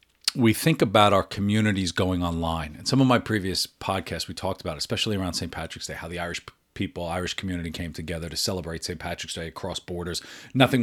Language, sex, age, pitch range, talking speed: English, male, 40-59, 90-120 Hz, 205 wpm